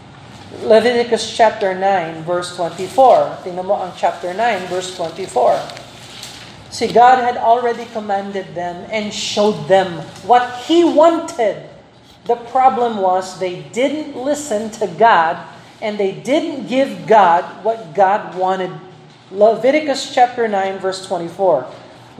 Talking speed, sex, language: 120 wpm, male, Filipino